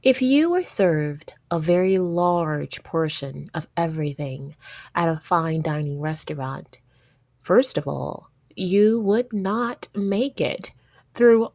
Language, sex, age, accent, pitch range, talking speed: English, female, 30-49, American, 150-205 Hz, 125 wpm